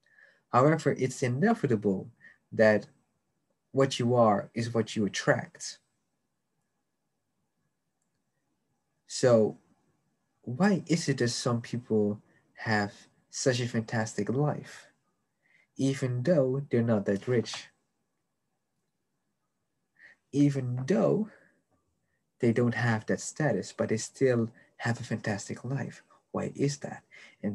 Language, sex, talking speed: English, male, 100 wpm